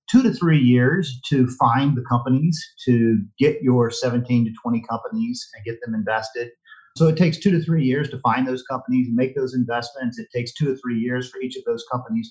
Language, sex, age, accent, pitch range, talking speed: English, male, 40-59, American, 110-140 Hz, 220 wpm